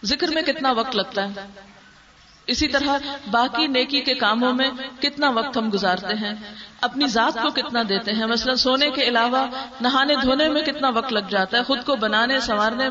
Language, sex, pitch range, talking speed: Urdu, female, 225-290 Hz, 185 wpm